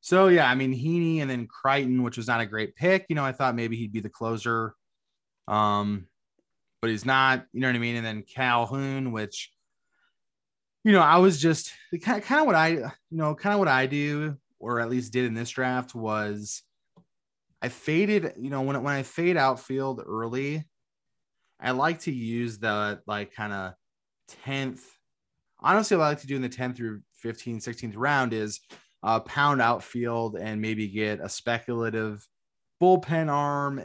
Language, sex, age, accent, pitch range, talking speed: English, male, 20-39, American, 110-135 Hz, 190 wpm